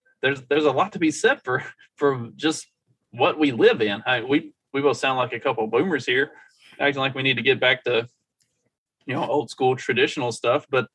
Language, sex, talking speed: English, male, 220 wpm